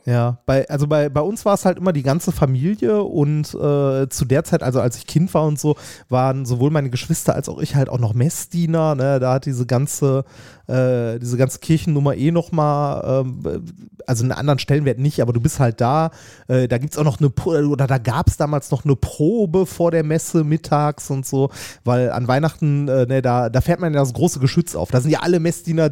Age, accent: 30-49, German